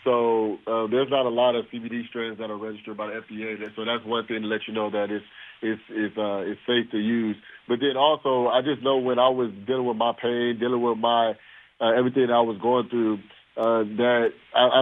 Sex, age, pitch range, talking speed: male, 20-39, 110-120 Hz, 230 wpm